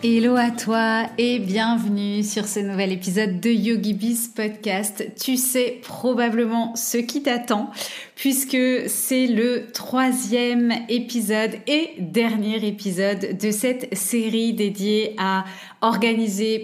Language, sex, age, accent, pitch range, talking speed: French, female, 30-49, French, 195-230 Hz, 115 wpm